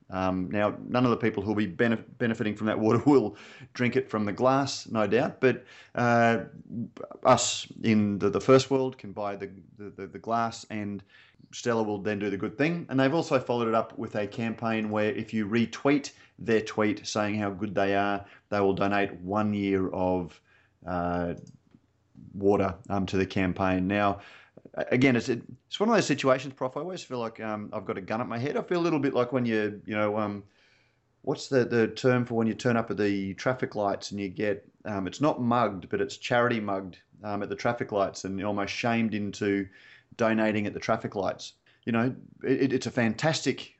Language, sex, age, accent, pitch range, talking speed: English, male, 30-49, Australian, 100-125 Hz, 210 wpm